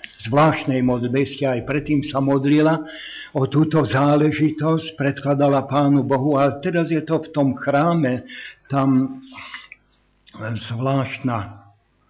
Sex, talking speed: male, 100 wpm